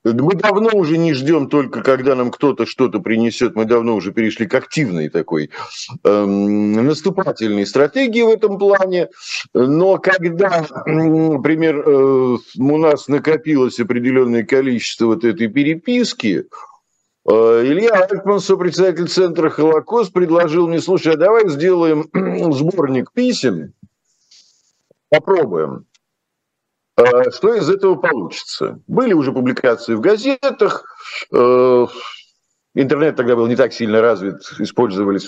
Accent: native